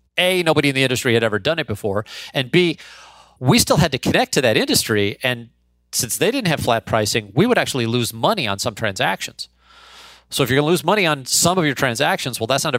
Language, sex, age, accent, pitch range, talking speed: English, male, 40-59, American, 110-140 Hz, 240 wpm